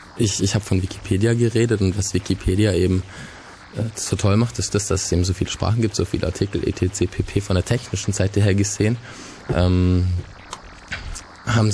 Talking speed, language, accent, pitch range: 185 wpm, German, German, 95-105 Hz